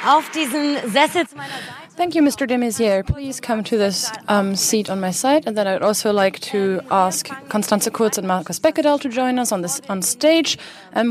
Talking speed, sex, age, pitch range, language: 180 wpm, female, 20-39, 190-235 Hz, German